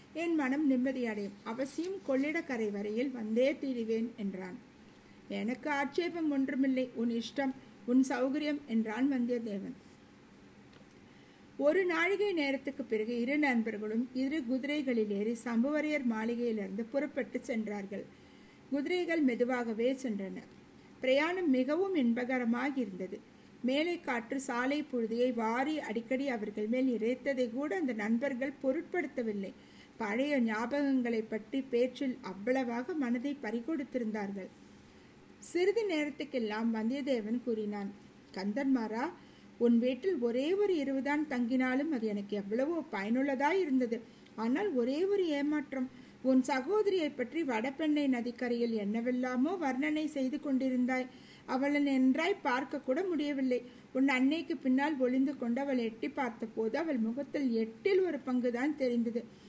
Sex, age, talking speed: female, 50-69, 105 wpm